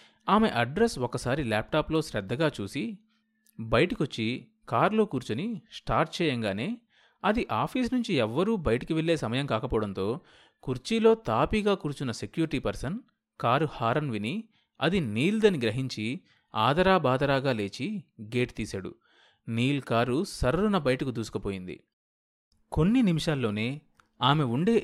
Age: 30-49